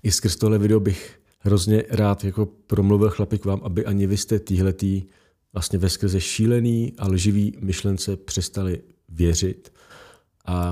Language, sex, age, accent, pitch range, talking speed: Czech, male, 40-59, native, 90-110 Hz, 130 wpm